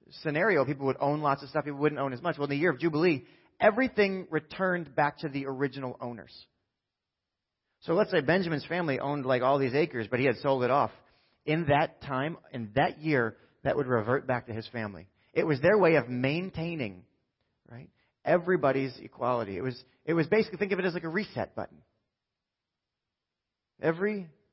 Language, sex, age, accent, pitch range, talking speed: English, male, 30-49, American, 120-165 Hz, 190 wpm